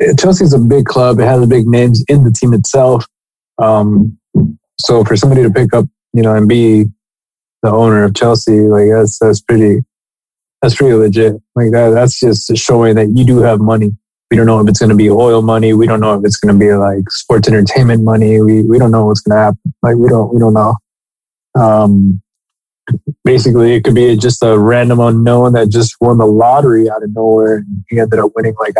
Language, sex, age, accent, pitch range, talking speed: English, male, 20-39, American, 110-125 Hz, 220 wpm